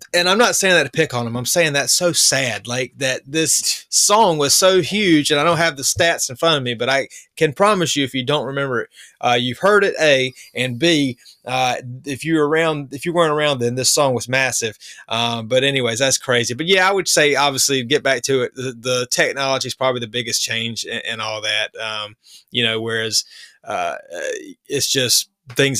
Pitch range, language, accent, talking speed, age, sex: 125-155 Hz, English, American, 225 wpm, 20-39, male